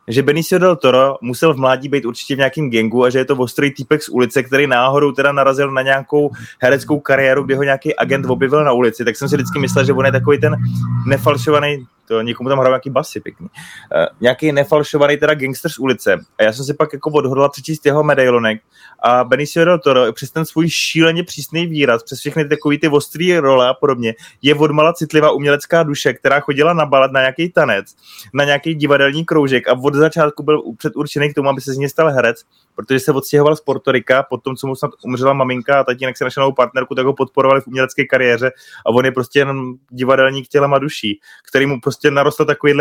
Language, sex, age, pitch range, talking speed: Czech, male, 20-39, 130-150 Hz, 215 wpm